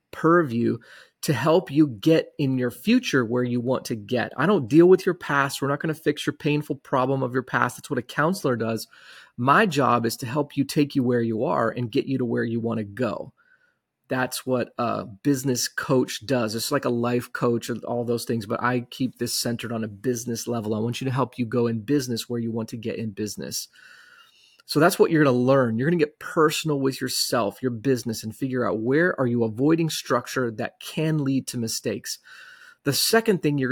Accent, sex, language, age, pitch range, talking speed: American, male, English, 30-49, 120-150 Hz, 230 wpm